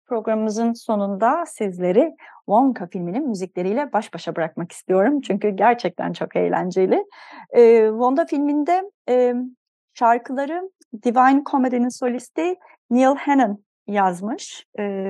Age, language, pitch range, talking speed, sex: 30-49, Turkish, 195-260 Hz, 105 wpm, female